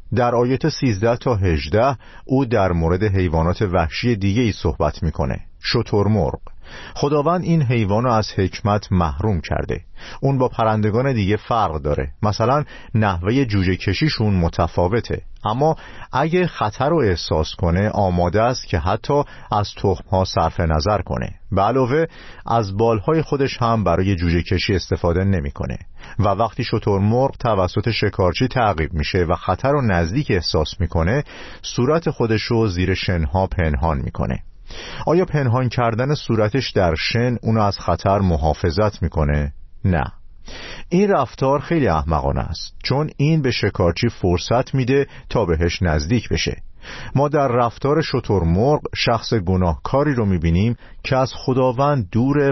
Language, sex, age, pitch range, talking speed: Persian, male, 50-69, 90-125 Hz, 140 wpm